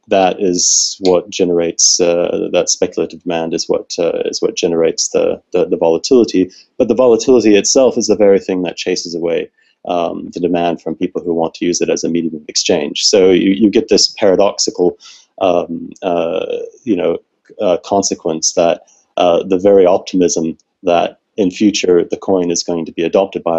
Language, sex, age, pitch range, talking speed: English, male, 30-49, 85-120 Hz, 185 wpm